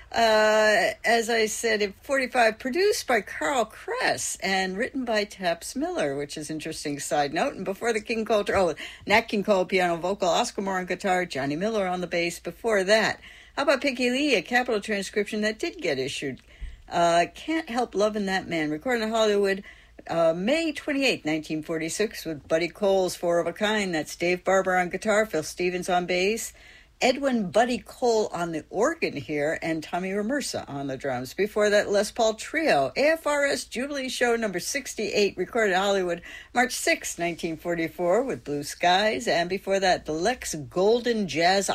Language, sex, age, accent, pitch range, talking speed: English, female, 60-79, American, 170-230 Hz, 175 wpm